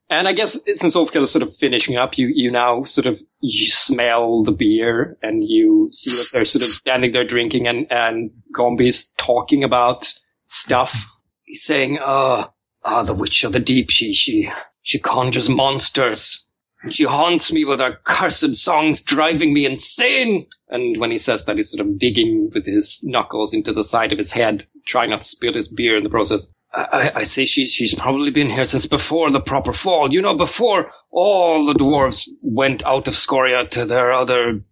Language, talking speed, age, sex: English, 195 wpm, 30-49, male